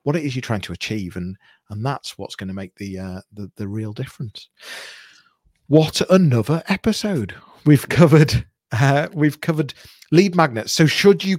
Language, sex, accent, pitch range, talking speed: English, male, British, 110-150 Hz, 175 wpm